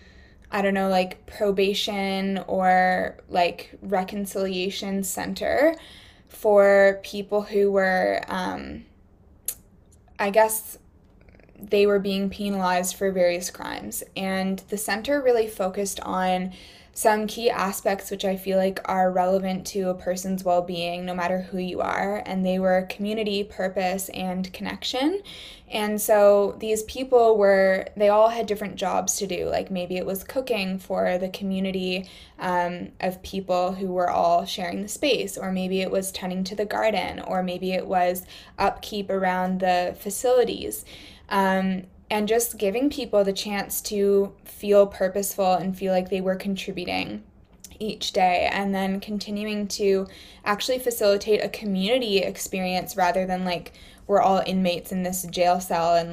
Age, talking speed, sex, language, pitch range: 10-29, 150 wpm, female, English, 180-205 Hz